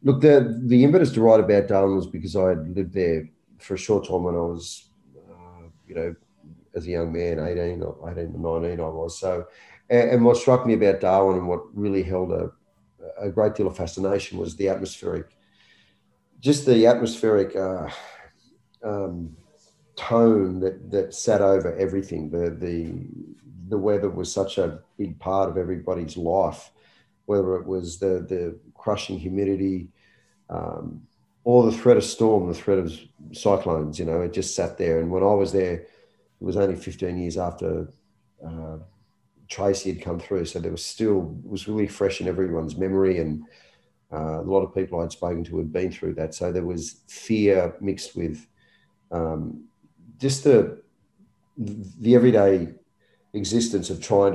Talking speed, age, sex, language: 170 wpm, 40-59, male, English